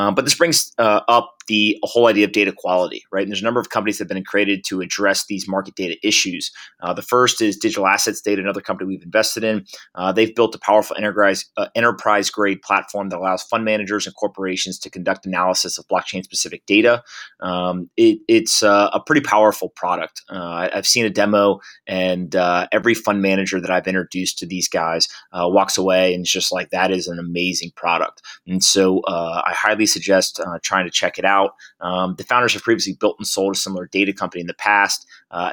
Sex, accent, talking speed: male, American, 210 wpm